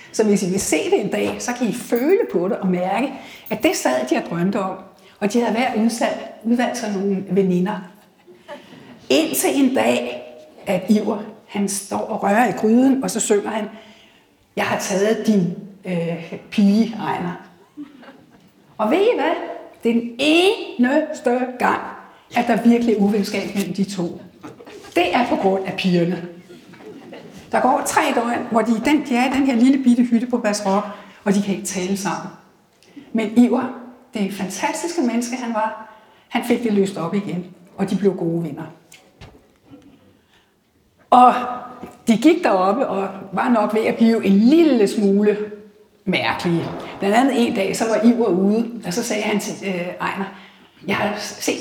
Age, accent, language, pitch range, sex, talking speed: 60-79, native, Danish, 190-245 Hz, female, 170 wpm